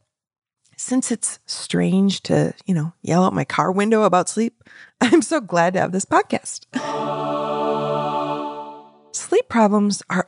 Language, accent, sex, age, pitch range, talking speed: English, American, female, 20-39, 170-235 Hz, 135 wpm